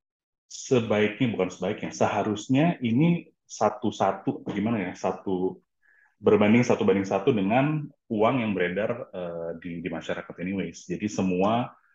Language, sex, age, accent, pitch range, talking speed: Indonesian, male, 30-49, native, 90-120 Hz, 120 wpm